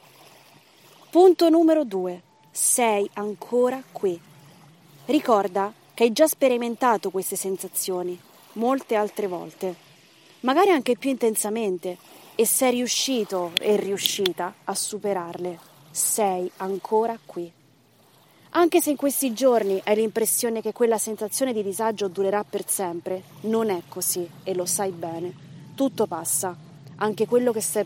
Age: 20-39